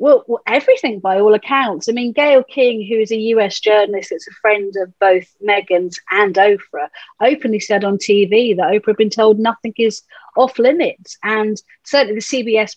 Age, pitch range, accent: 40-59, 195-240 Hz, British